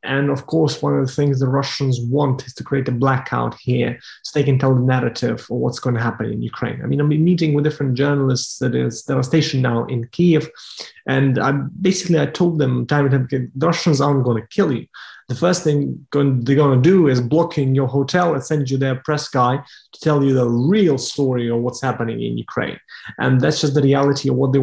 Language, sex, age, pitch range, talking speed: English, male, 30-49, 125-150 Hz, 235 wpm